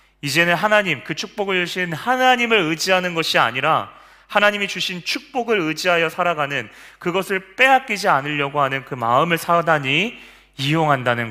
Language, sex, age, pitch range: Korean, male, 30-49, 115-155 Hz